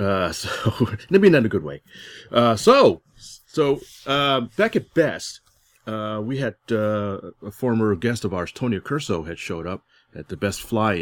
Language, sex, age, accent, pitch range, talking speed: English, male, 30-49, American, 90-125 Hz, 180 wpm